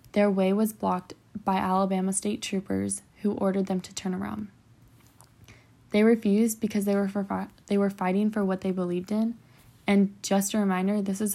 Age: 10-29